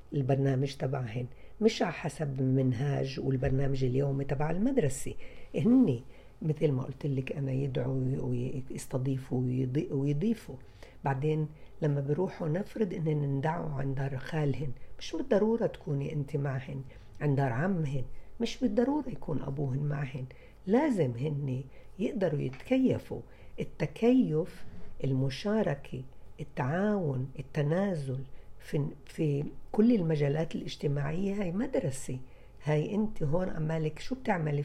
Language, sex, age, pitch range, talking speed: Arabic, female, 60-79, 140-185 Hz, 105 wpm